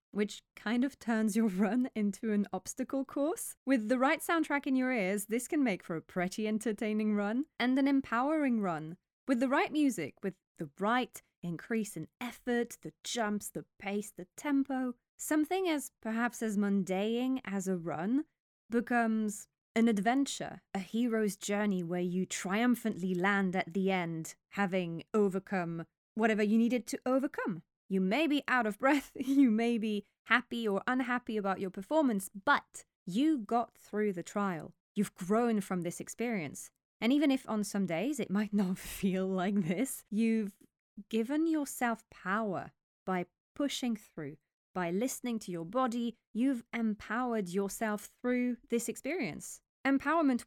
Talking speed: 155 wpm